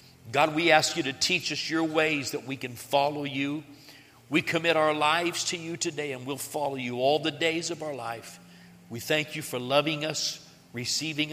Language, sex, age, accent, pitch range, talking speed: English, male, 60-79, American, 125-160 Hz, 200 wpm